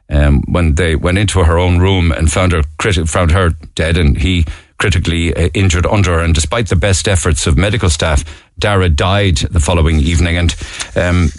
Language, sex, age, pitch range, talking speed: English, male, 50-69, 80-95 Hz, 195 wpm